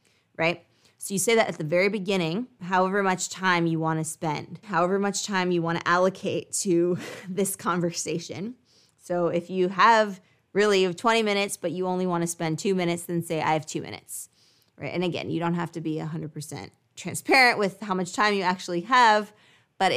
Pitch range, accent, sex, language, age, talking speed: 160-190 Hz, American, female, English, 20-39, 195 wpm